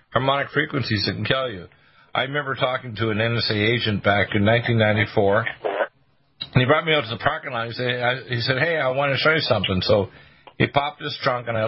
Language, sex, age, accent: English, male, 50-69, American